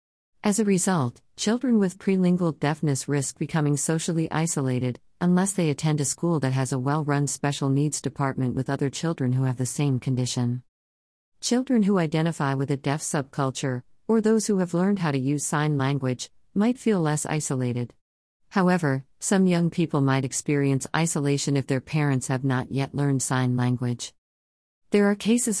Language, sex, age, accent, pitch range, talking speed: English, female, 50-69, American, 125-160 Hz, 165 wpm